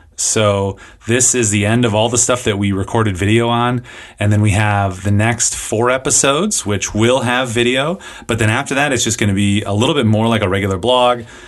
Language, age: English, 30-49